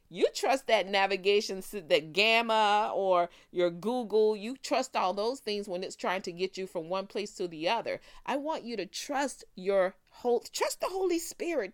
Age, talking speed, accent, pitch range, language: 40-59, 190 wpm, American, 185-260 Hz, English